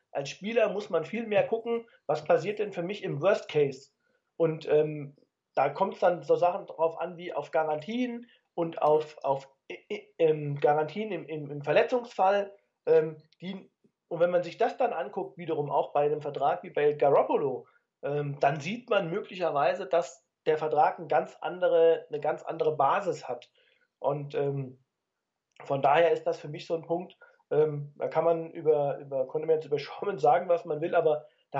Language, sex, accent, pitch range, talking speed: German, male, German, 155-220 Hz, 180 wpm